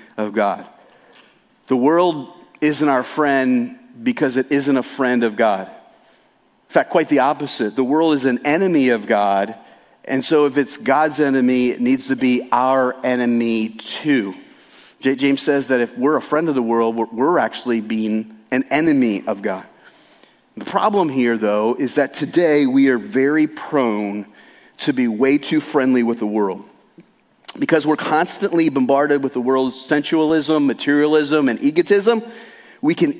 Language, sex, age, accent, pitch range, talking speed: English, male, 40-59, American, 130-180 Hz, 160 wpm